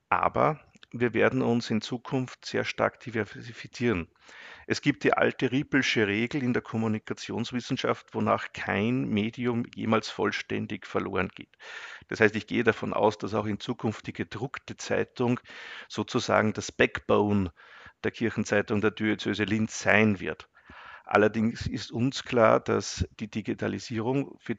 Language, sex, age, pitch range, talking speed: German, male, 50-69, 105-125 Hz, 135 wpm